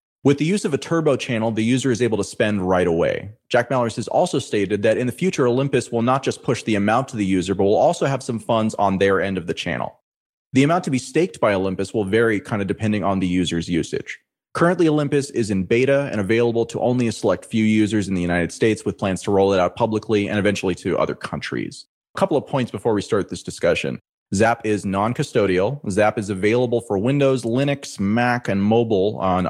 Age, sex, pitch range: 30-49, male, 100-125 Hz